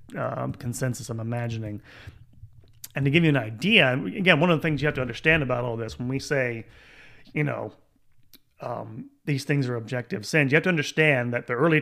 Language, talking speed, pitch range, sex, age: English, 210 wpm, 120-145 Hz, male, 30-49